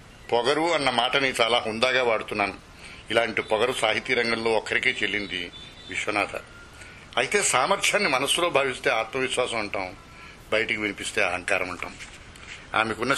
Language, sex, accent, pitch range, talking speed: Telugu, male, native, 105-125 Hz, 105 wpm